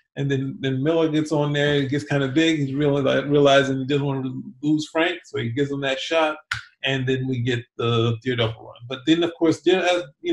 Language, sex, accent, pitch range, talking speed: English, male, American, 135-165 Hz, 240 wpm